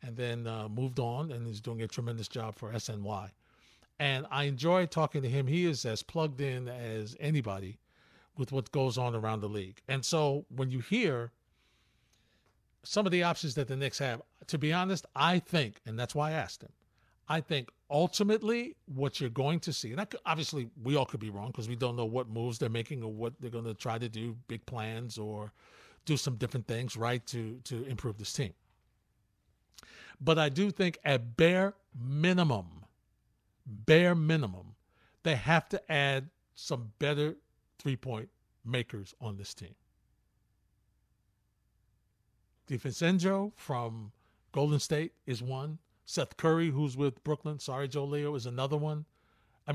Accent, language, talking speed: American, English, 170 wpm